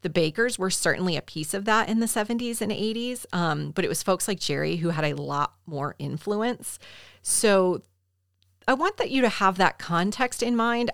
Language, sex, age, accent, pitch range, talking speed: English, female, 30-49, American, 155-195 Hz, 205 wpm